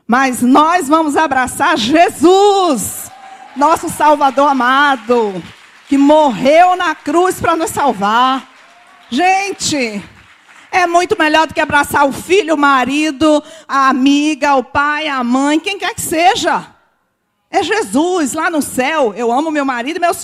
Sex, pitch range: female, 250-340 Hz